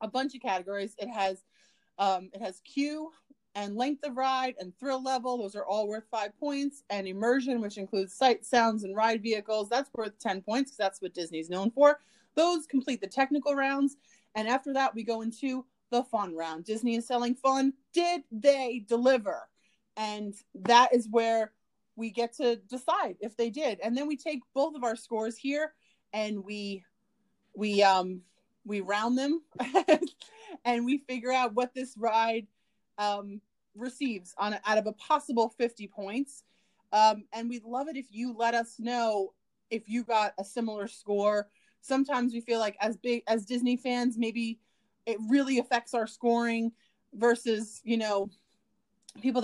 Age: 30-49